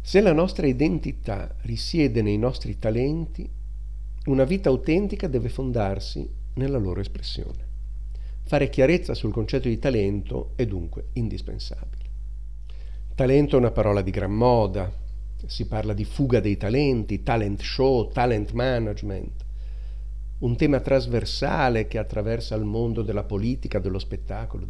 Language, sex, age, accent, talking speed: Italian, male, 50-69, native, 130 wpm